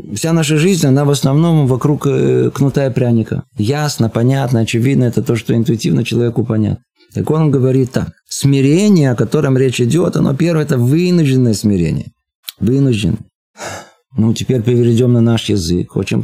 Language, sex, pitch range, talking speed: Russian, male, 105-125 Hz, 150 wpm